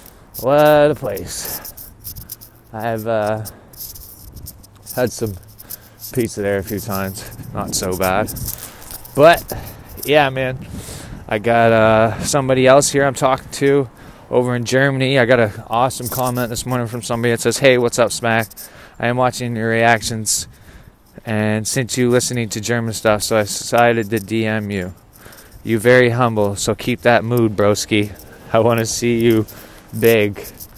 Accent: American